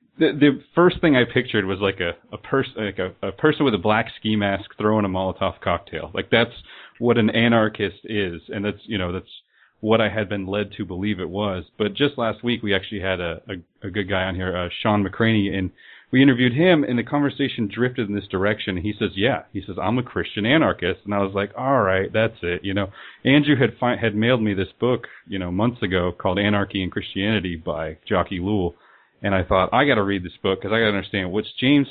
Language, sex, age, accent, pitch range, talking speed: English, male, 30-49, American, 100-125 Hz, 235 wpm